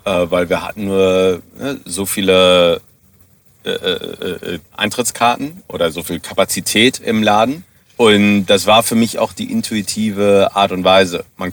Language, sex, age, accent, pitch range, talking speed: German, male, 40-59, German, 95-110 Hz, 130 wpm